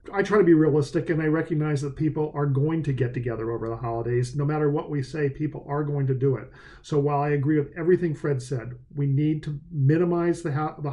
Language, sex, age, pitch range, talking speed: English, male, 50-69, 135-160 Hz, 235 wpm